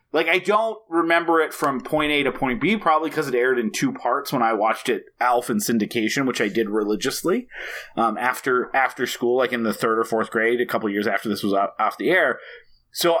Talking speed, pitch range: 230 wpm, 115-165 Hz